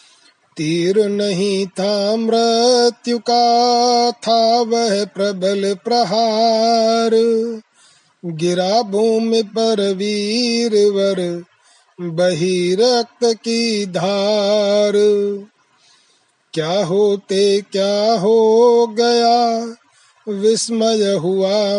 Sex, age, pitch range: male, 30-49, 195-230 Hz